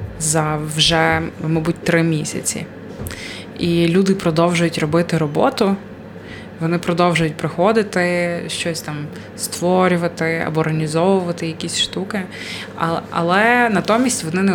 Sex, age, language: female, 20-39, Ukrainian